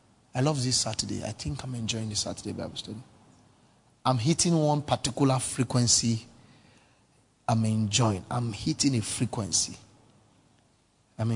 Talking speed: 125 wpm